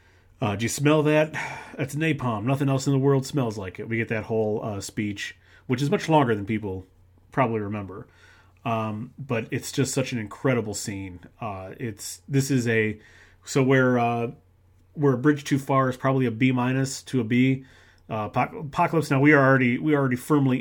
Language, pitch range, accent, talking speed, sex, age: English, 105-135 Hz, American, 195 wpm, male, 30-49